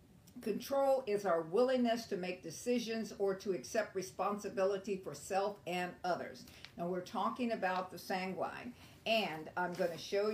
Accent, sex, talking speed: American, female, 150 wpm